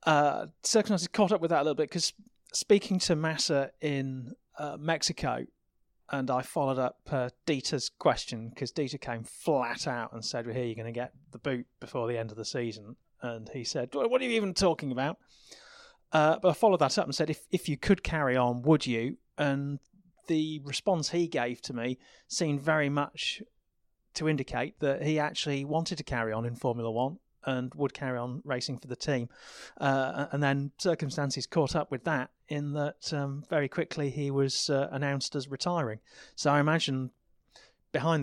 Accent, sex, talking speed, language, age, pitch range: British, male, 190 wpm, English, 30-49, 125-155 Hz